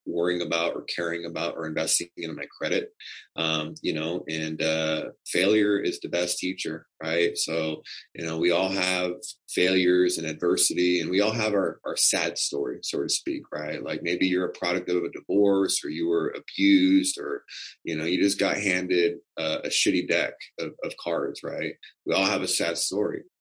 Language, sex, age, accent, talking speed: English, male, 30-49, American, 190 wpm